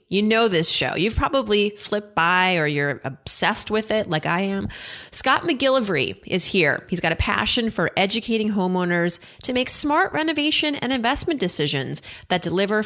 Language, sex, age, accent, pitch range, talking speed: English, female, 30-49, American, 165-220 Hz, 170 wpm